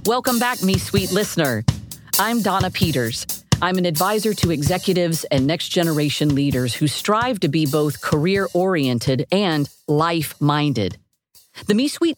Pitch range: 135-195 Hz